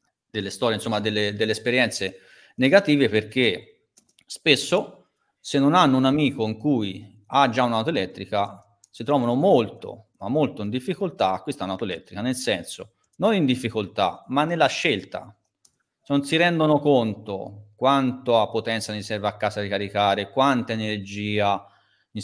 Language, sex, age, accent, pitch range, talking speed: Italian, male, 30-49, native, 105-140 Hz, 145 wpm